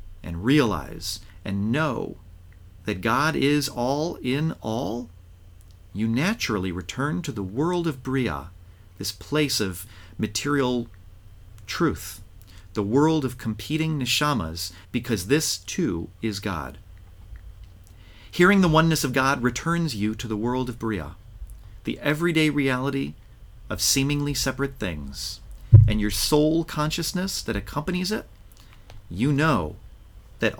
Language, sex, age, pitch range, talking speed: English, male, 40-59, 95-130 Hz, 120 wpm